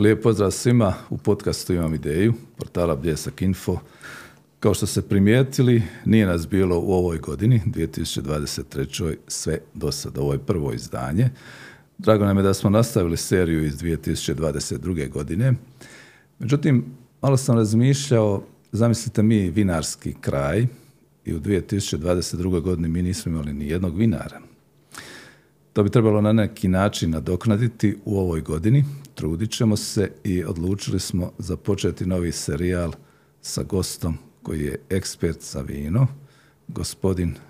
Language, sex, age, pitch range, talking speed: Croatian, male, 50-69, 80-110 Hz, 130 wpm